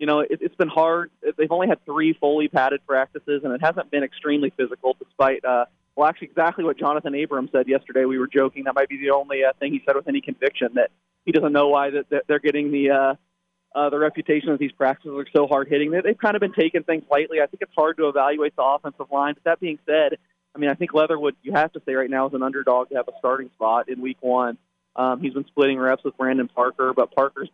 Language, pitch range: English, 130-155 Hz